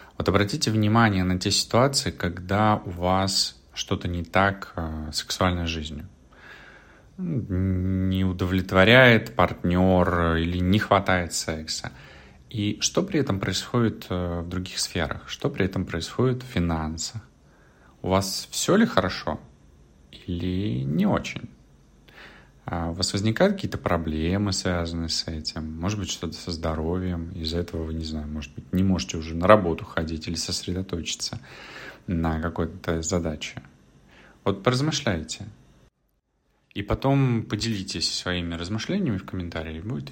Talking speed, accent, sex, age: 125 wpm, native, male, 30-49